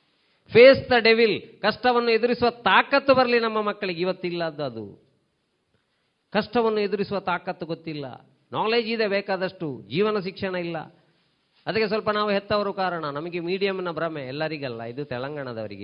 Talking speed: 115 wpm